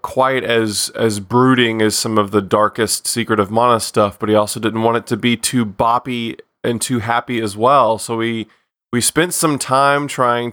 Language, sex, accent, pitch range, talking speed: English, male, American, 105-135 Hz, 200 wpm